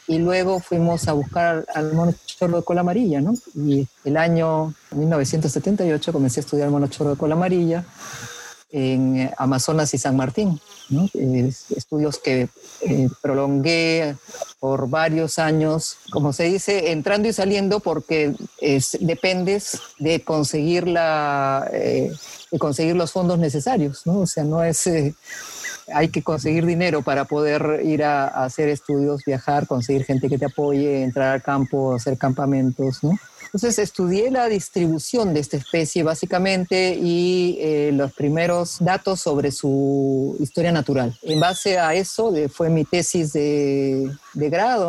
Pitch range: 140-175 Hz